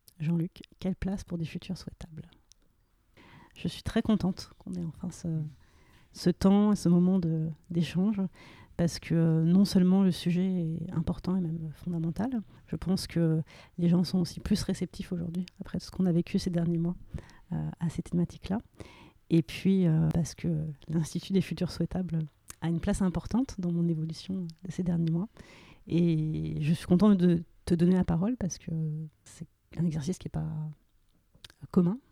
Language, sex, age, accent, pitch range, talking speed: French, female, 30-49, French, 165-185 Hz, 175 wpm